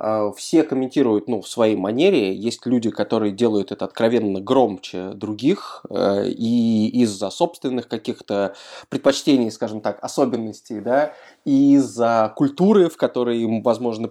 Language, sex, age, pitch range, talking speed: Russian, male, 20-39, 105-125 Hz, 125 wpm